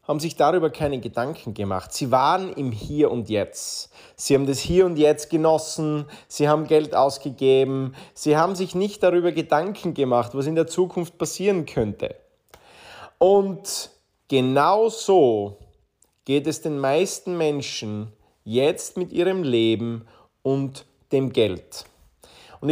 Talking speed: 135 wpm